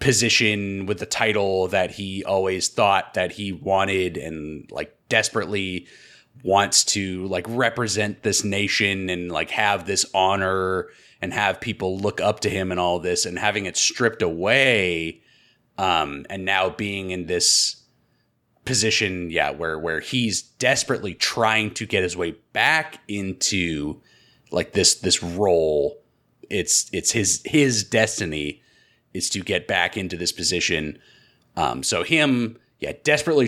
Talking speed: 145 wpm